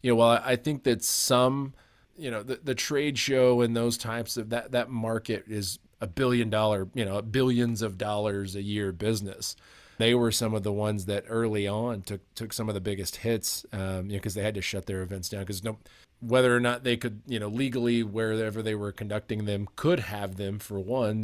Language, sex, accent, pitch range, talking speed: English, male, American, 100-120 Hz, 225 wpm